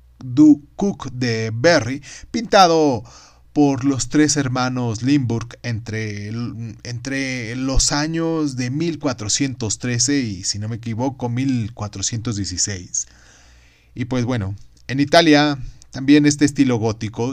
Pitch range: 105-140 Hz